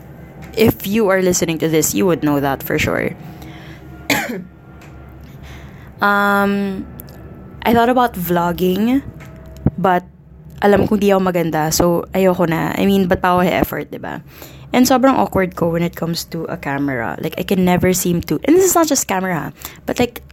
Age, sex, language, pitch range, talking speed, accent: 20-39, female, English, 165-200 Hz, 170 wpm, Filipino